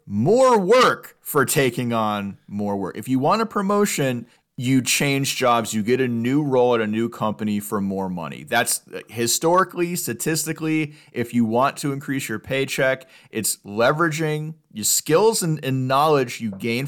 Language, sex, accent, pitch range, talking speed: English, male, American, 115-155 Hz, 165 wpm